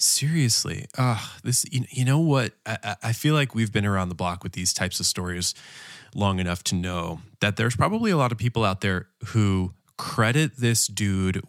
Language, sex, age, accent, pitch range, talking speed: English, male, 20-39, American, 95-135 Hz, 200 wpm